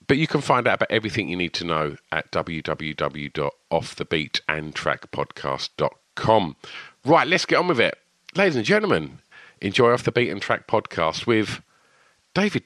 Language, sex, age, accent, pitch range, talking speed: English, male, 50-69, British, 100-155 Hz, 145 wpm